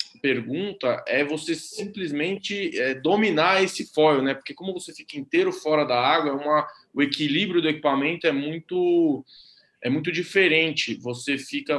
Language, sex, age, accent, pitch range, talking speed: Portuguese, male, 20-39, Brazilian, 130-165 Hz, 155 wpm